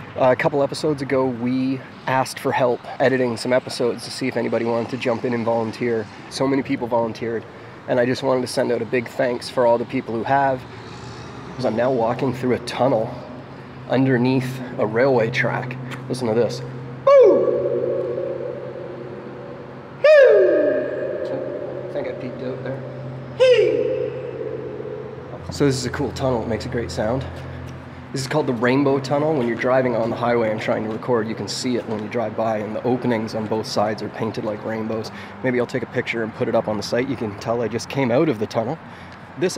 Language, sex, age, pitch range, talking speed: English, male, 30-49, 115-135 Hz, 190 wpm